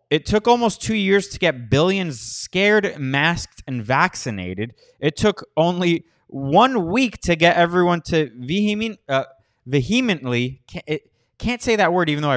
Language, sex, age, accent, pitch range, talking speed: English, male, 20-39, American, 120-170 Hz, 140 wpm